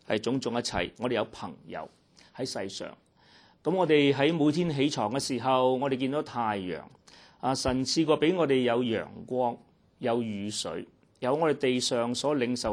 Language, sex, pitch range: Chinese, male, 120-170 Hz